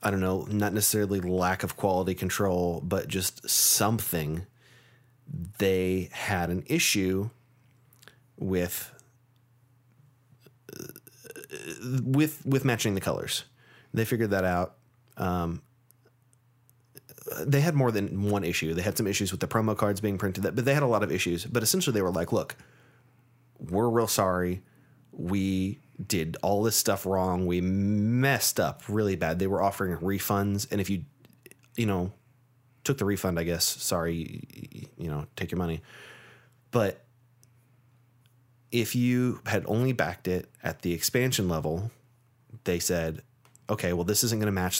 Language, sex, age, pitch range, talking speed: English, male, 30-49, 95-125 Hz, 150 wpm